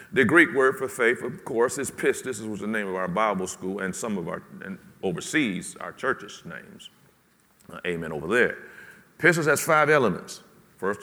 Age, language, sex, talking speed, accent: 50-69, English, male, 190 wpm, American